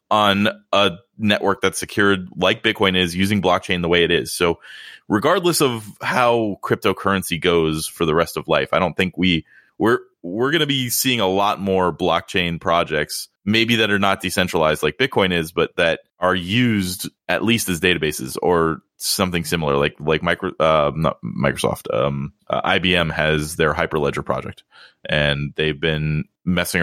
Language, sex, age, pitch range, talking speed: English, male, 20-39, 80-100 Hz, 170 wpm